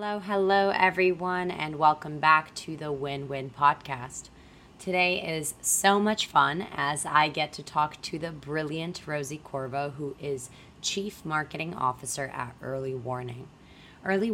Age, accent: 20-39, American